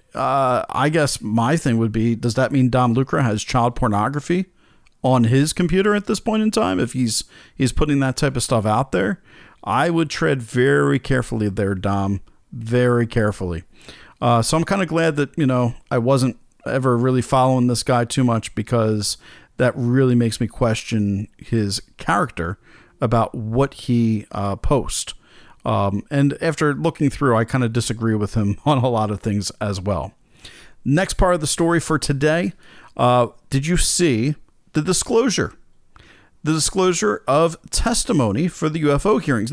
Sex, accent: male, American